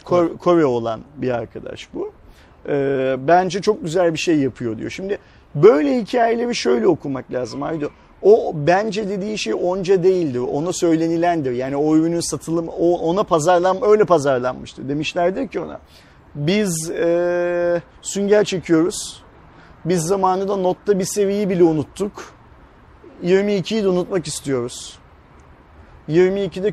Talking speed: 115 wpm